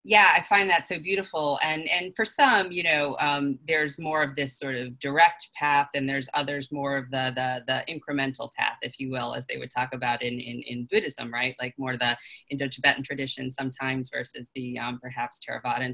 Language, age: English, 30-49